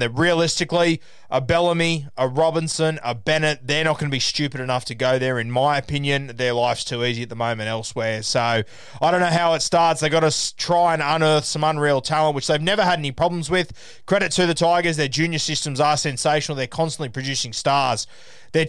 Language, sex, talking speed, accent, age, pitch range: English, male, 210 wpm, Australian, 20-39, 130-165 Hz